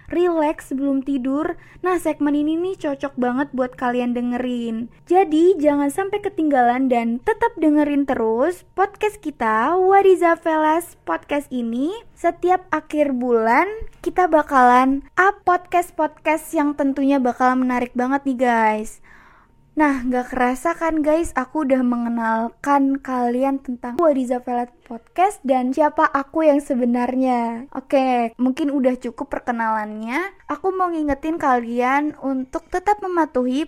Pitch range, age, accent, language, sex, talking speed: 255-335 Hz, 20-39, native, Indonesian, female, 125 wpm